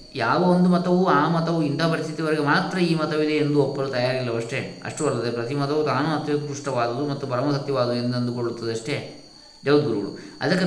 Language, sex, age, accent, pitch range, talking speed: Kannada, male, 20-39, native, 125-155 Hz, 140 wpm